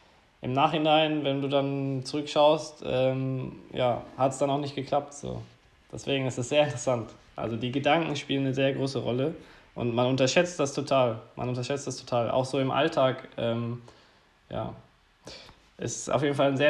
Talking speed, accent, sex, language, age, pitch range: 170 wpm, German, male, German, 20-39, 125-150 Hz